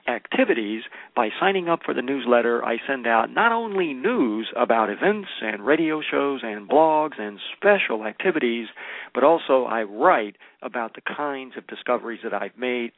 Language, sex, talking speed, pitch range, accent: English, male, 160 wpm, 110-180 Hz, American